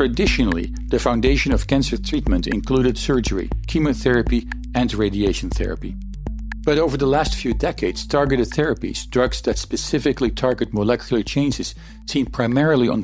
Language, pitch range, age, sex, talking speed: English, 120-140 Hz, 50-69, male, 135 wpm